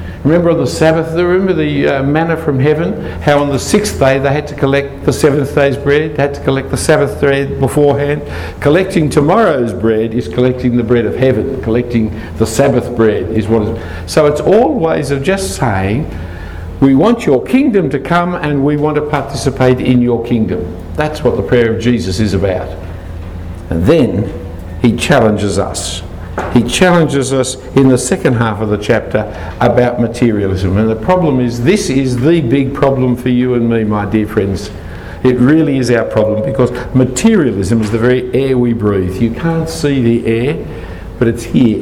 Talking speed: 185 wpm